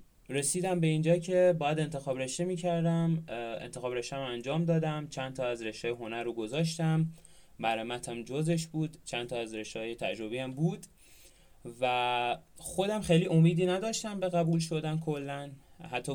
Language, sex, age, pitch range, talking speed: Persian, male, 20-39, 120-170 Hz, 145 wpm